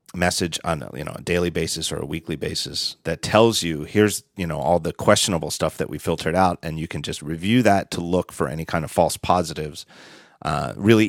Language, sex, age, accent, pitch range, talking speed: English, male, 30-49, American, 80-100 Hz, 225 wpm